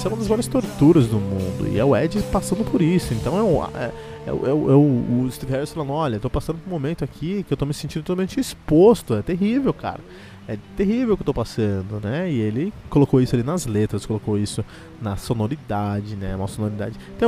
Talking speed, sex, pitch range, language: 215 wpm, male, 105-165 Hz, Portuguese